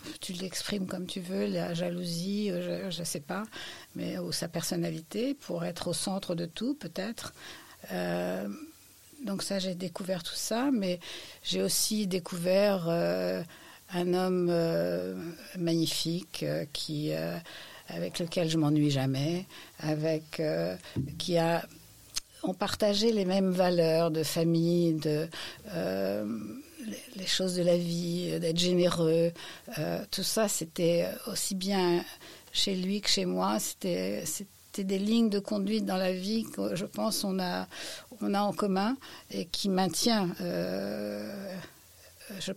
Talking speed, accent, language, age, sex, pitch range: 140 wpm, French, French, 60-79, female, 165-195 Hz